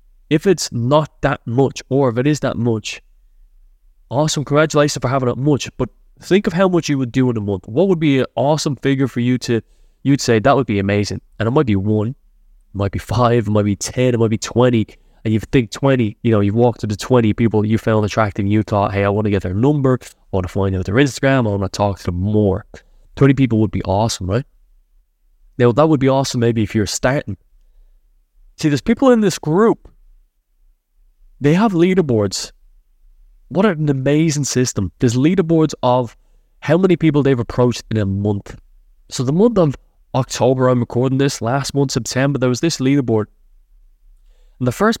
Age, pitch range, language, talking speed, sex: 20-39, 105-140 Hz, English, 205 wpm, male